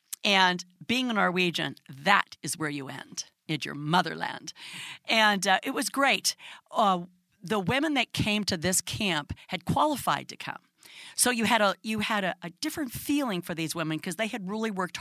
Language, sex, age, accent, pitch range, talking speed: Swedish, female, 50-69, American, 170-225 Hz, 190 wpm